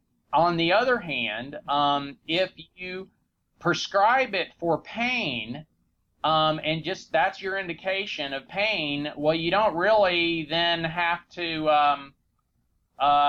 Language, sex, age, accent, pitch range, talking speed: English, male, 30-49, American, 150-185 Hz, 125 wpm